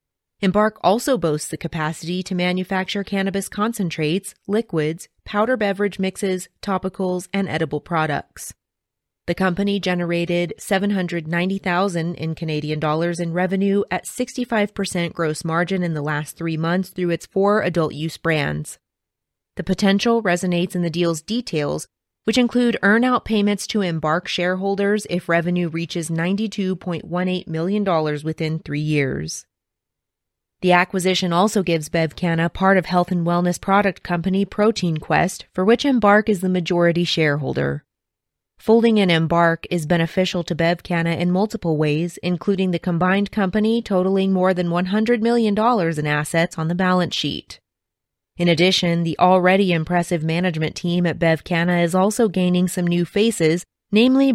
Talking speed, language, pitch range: 135 wpm, English, 165-195 Hz